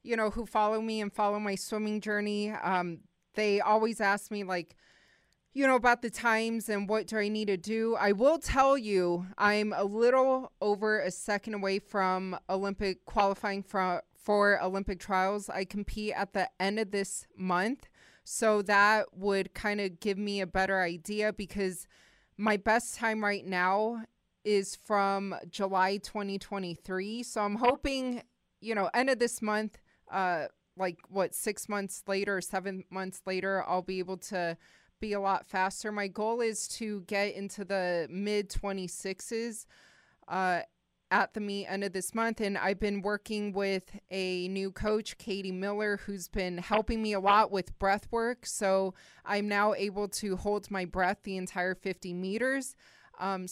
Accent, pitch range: American, 190-215 Hz